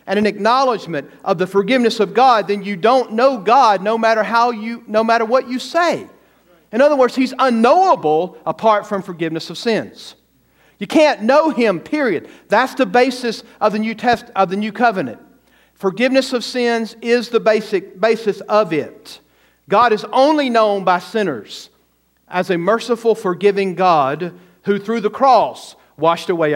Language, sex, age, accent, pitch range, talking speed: English, male, 50-69, American, 195-240 Hz, 165 wpm